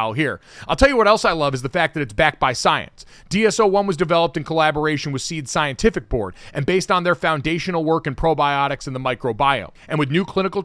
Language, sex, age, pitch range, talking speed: English, male, 30-49, 140-185 Hz, 225 wpm